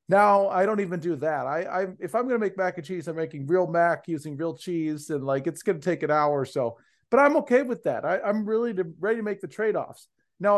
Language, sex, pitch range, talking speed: English, male, 160-205 Hz, 265 wpm